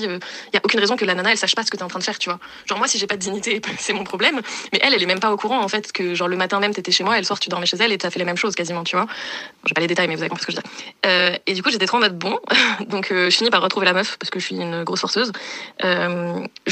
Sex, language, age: female, French, 20-39